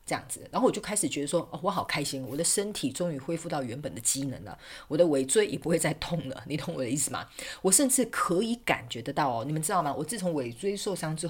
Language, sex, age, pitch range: Chinese, female, 40-59, 140-190 Hz